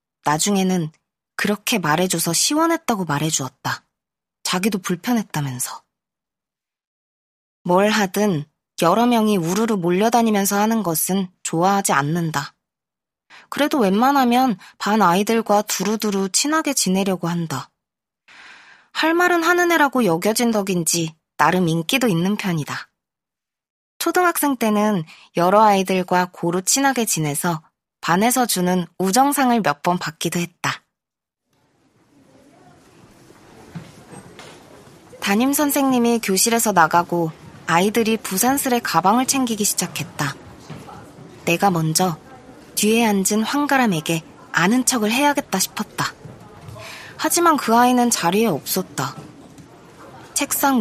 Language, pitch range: Korean, 170-240 Hz